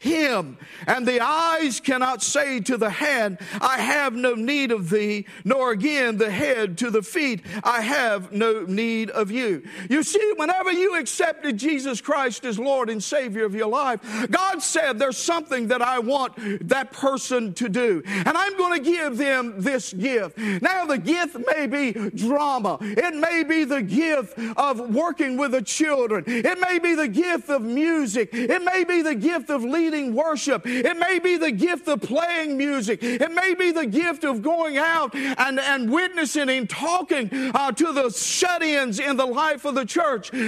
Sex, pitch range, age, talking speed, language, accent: male, 245-330 Hz, 50-69, 180 wpm, English, American